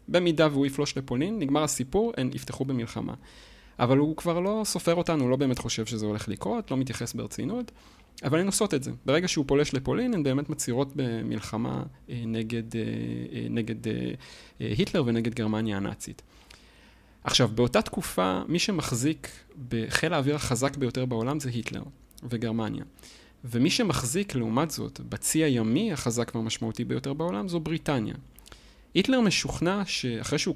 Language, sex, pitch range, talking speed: Hebrew, male, 115-155 Hz, 145 wpm